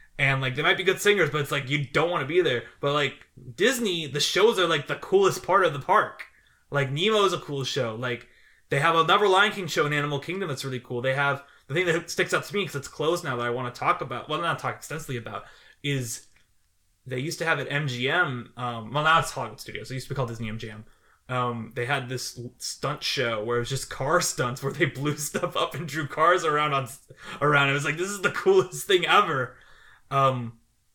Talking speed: 245 wpm